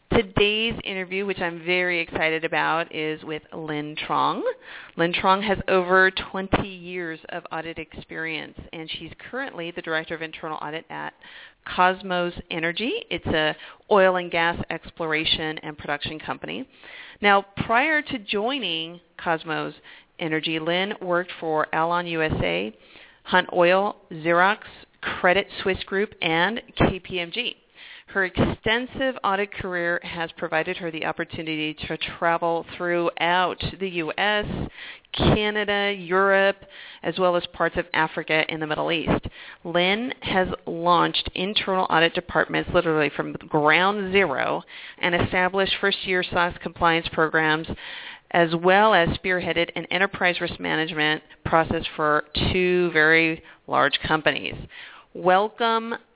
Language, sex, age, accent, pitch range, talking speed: English, female, 40-59, American, 160-195 Hz, 125 wpm